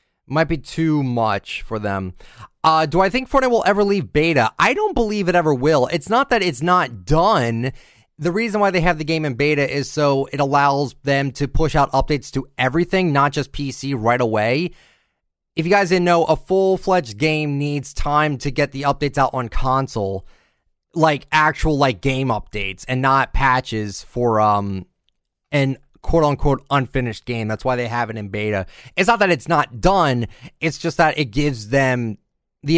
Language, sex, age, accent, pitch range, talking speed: English, male, 20-39, American, 125-160 Hz, 190 wpm